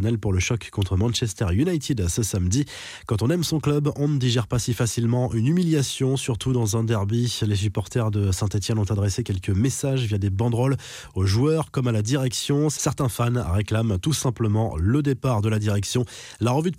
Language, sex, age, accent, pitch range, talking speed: French, male, 20-39, French, 105-130 Hz, 195 wpm